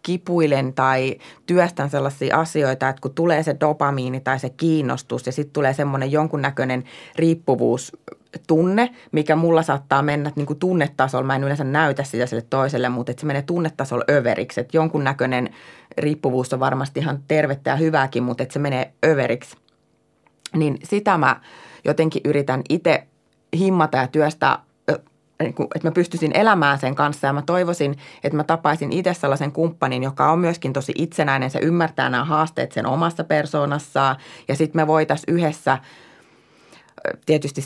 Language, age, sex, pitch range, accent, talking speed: Finnish, 30-49, female, 135-155 Hz, native, 155 wpm